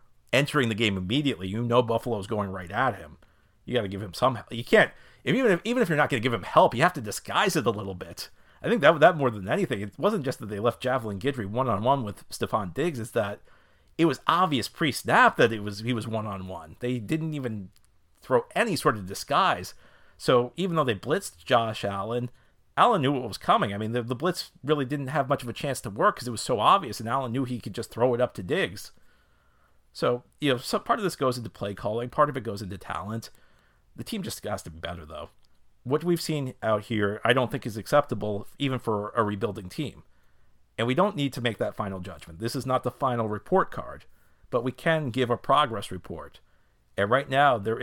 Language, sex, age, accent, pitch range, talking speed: English, male, 40-59, American, 100-130 Hz, 235 wpm